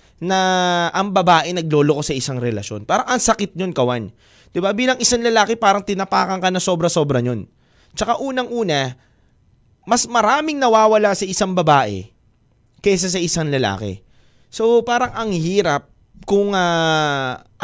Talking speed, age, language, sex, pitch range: 140 wpm, 20-39, Filipino, male, 140-225 Hz